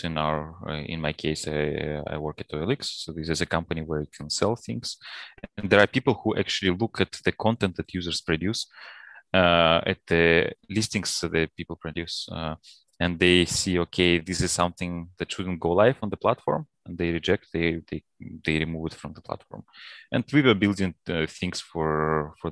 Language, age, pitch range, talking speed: English, 20-39, 80-95 Hz, 195 wpm